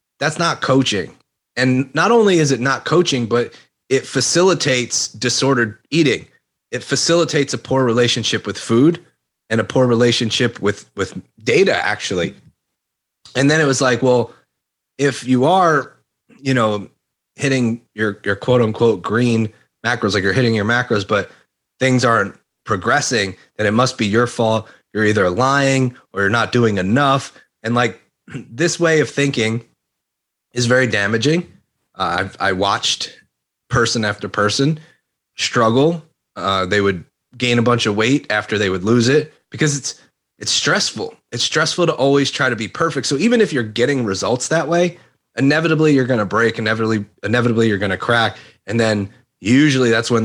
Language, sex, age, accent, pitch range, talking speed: English, male, 30-49, American, 110-140 Hz, 165 wpm